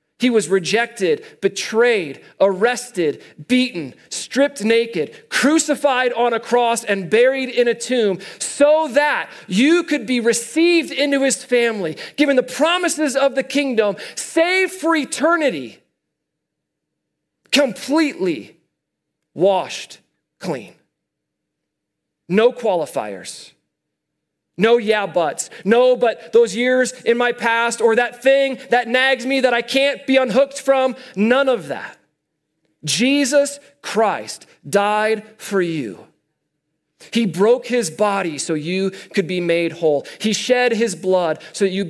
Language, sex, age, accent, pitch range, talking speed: English, male, 40-59, American, 195-265 Hz, 125 wpm